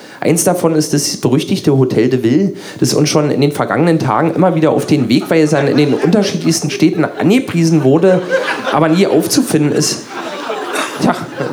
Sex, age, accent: male, 40-59, German